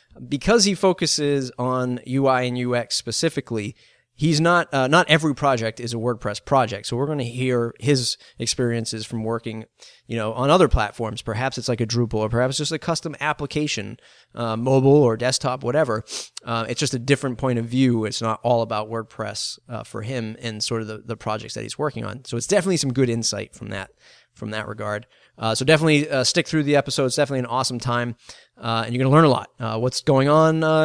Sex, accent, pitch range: male, American, 115-145 Hz